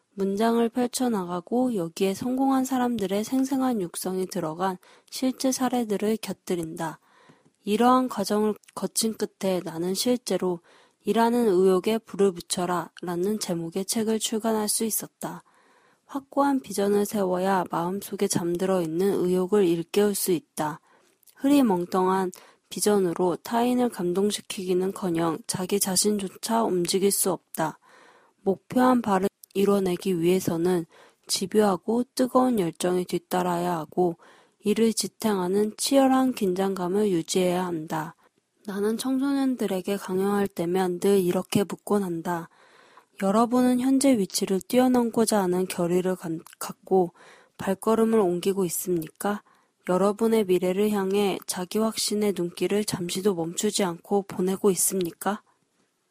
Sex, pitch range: female, 180-225 Hz